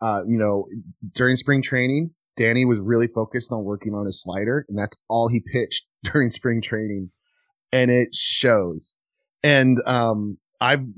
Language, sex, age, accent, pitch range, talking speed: English, male, 30-49, American, 105-140 Hz, 160 wpm